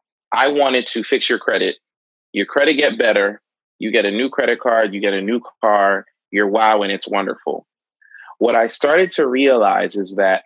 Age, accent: 20-39, American